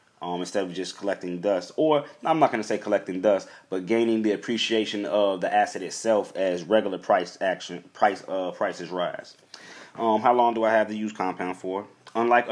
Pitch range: 100-125 Hz